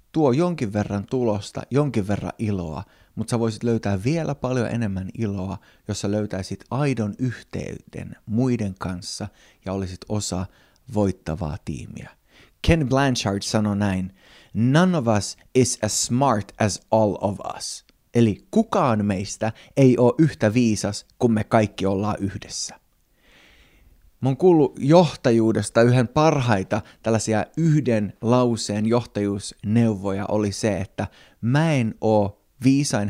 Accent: native